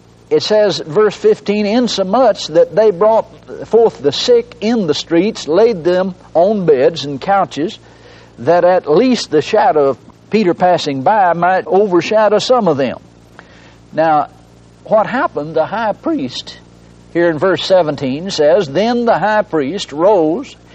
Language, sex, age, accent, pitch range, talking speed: English, male, 60-79, American, 140-205 Hz, 145 wpm